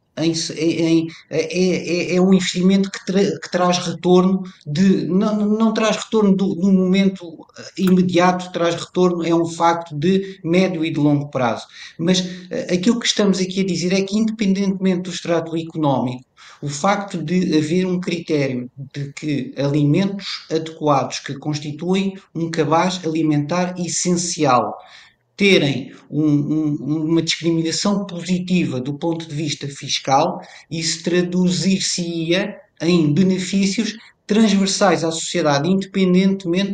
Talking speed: 120 wpm